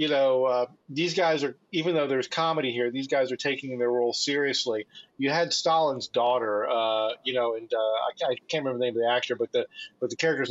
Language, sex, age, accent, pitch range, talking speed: English, male, 40-59, American, 125-170 Hz, 235 wpm